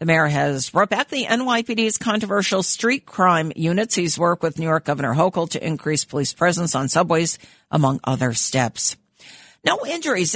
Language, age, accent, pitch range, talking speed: English, 50-69, American, 155-225 Hz, 170 wpm